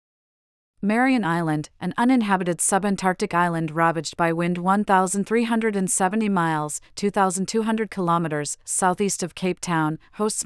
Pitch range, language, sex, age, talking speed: 165-200 Hz, English, female, 40-59, 100 wpm